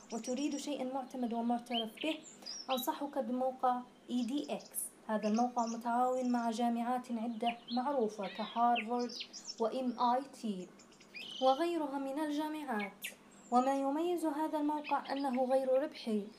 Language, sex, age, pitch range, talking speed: Arabic, female, 20-39, 235-280 Hz, 105 wpm